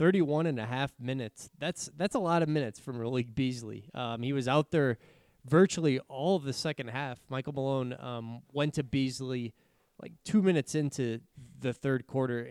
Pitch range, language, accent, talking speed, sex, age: 125-150 Hz, English, American, 180 wpm, male, 20-39